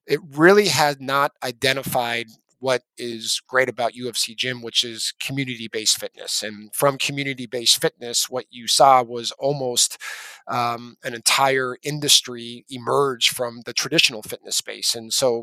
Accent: American